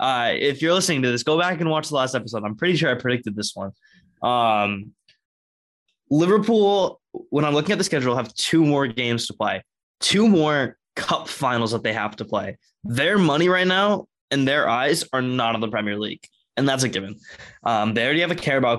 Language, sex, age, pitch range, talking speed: English, male, 20-39, 115-155 Hz, 210 wpm